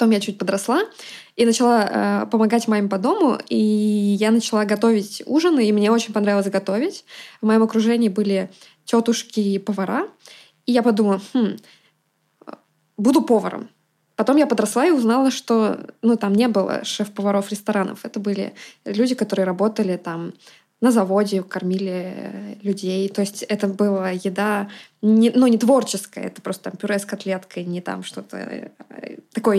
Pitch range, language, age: 200-240 Hz, Russian, 20-39